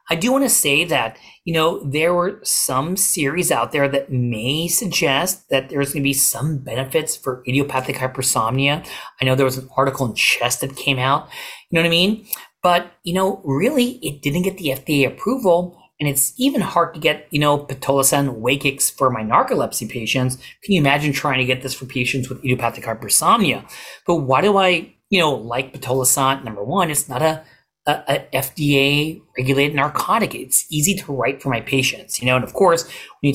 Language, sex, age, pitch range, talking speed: English, male, 30-49, 130-170 Hz, 195 wpm